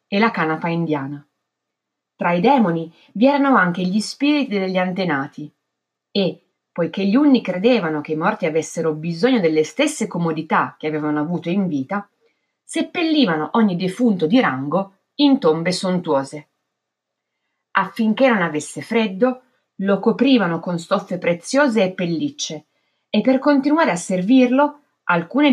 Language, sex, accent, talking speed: Italian, female, native, 135 wpm